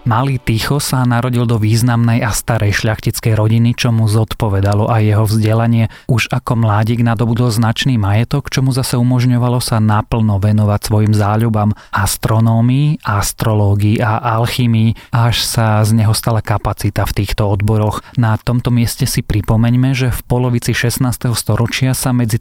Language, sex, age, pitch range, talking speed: Slovak, male, 30-49, 105-120 Hz, 150 wpm